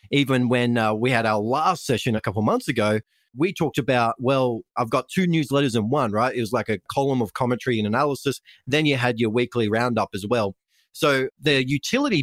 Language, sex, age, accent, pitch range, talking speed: English, male, 30-49, Australian, 110-140 Hz, 215 wpm